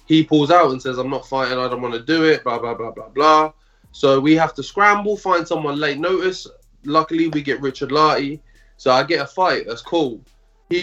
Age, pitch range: 20-39, 130-165 Hz